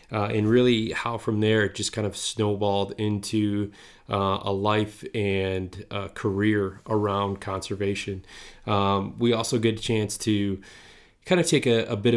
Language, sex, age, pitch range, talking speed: English, male, 20-39, 100-115 Hz, 165 wpm